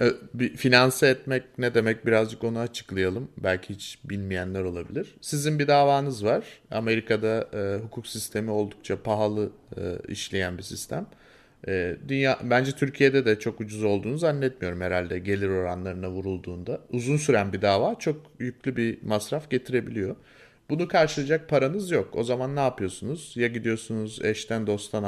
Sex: male